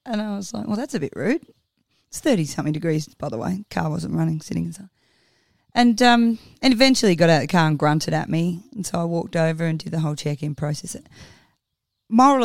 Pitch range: 150-180 Hz